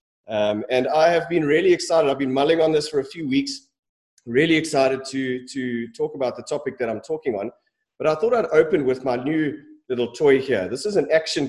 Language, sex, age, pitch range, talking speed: English, male, 30-49, 120-160 Hz, 225 wpm